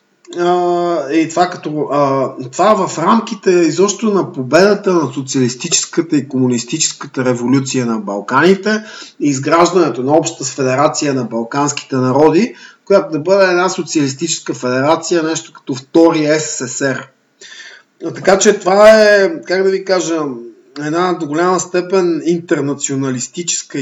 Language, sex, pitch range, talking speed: Bulgarian, male, 130-170 Hz, 125 wpm